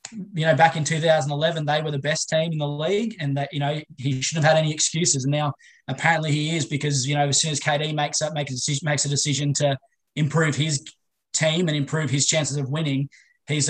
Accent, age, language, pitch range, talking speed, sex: Australian, 20-39, English, 140-155 Hz, 235 wpm, male